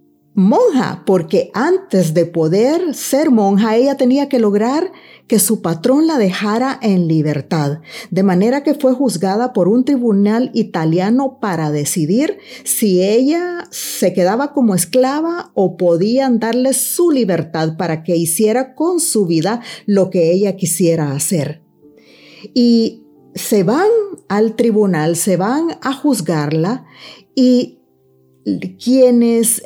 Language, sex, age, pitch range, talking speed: Spanish, female, 40-59, 185-265 Hz, 125 wpm